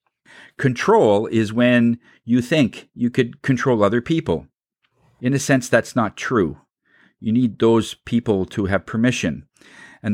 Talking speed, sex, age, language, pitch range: 140 wpm, male, 50-69, English, 110-135 Hz